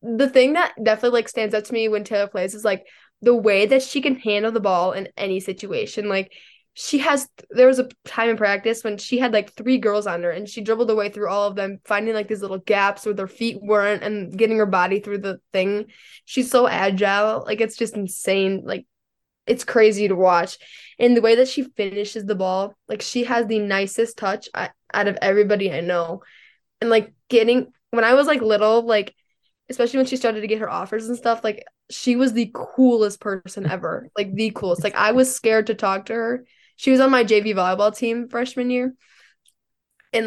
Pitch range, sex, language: 205-245 Hz, female, English